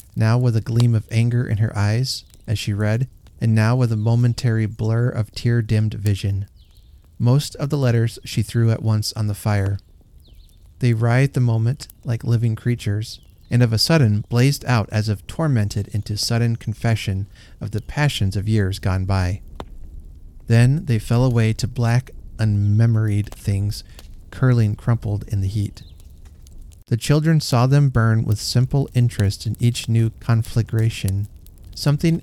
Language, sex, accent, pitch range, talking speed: English, male, American, 100-120 Hz, 155 wpm